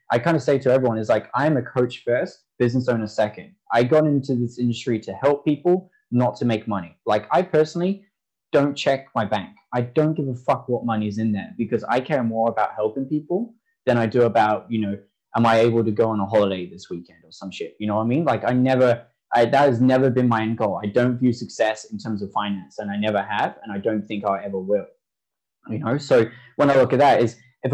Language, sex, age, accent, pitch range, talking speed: English, male, 10-29, Australian, 115-145 Hz, 245 wpm